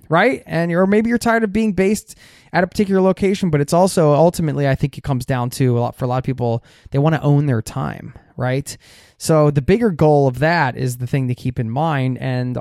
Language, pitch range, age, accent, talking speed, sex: English, 125-155 Hz, 20-39, American, 250 wpm, male